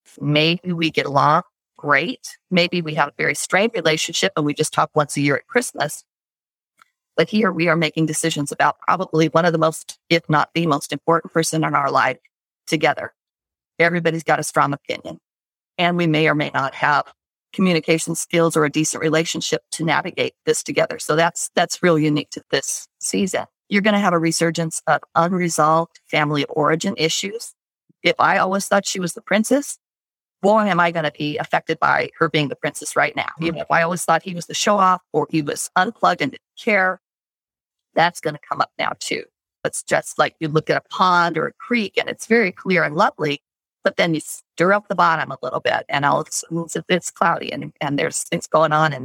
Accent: American